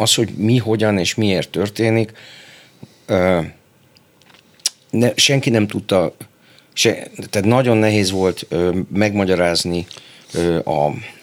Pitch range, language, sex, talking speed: 90-115 Hz, Hungarian, male, 90 wpm